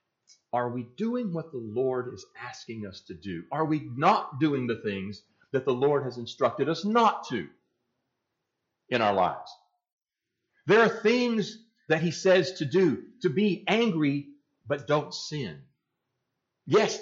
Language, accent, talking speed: English, American, 150 wpm